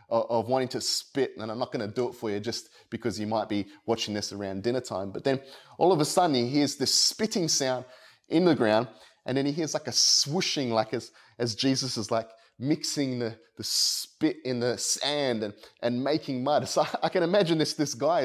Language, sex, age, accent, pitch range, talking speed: English, male, 30-49, Australian, 120-155 Hz, 225 wpm